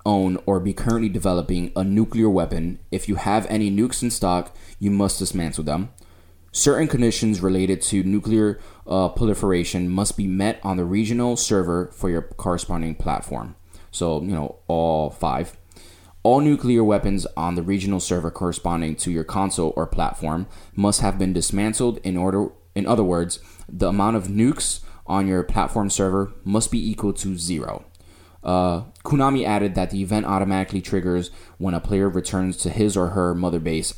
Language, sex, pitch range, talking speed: English, male, 85-100 Hz, 170 wpm